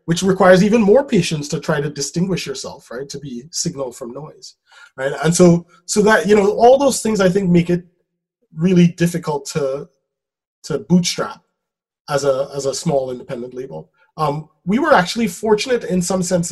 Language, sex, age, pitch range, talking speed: English, male, 30-49, 140-175 Hz, 180 wpm